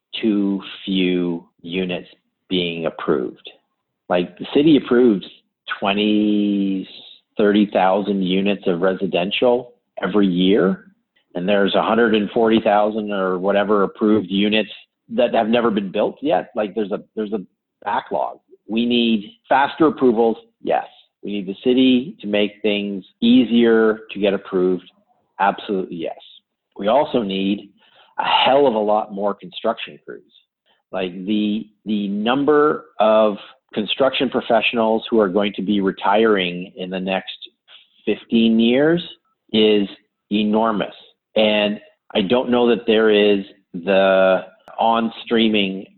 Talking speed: 125 wpm